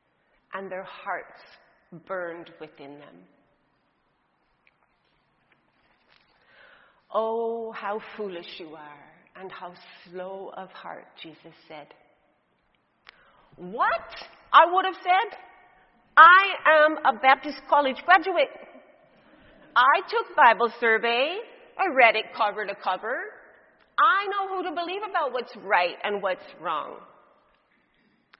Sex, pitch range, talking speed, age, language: female, 170-240 Hz, 105 wpm, 40-59, English